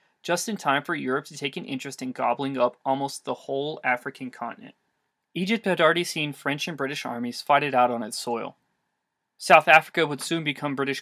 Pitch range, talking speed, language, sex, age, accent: 130-155 Hz, 200 wpm, English, male, 20-39, American